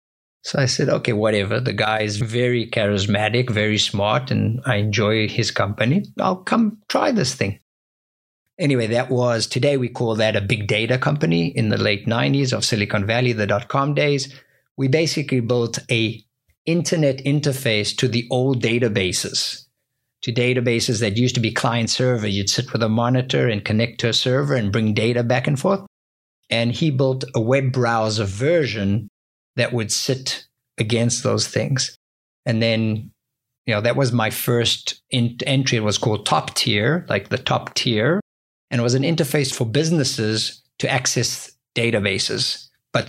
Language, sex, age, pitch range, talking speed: English, male, 50-69, 110-130 Hz, 170 wpm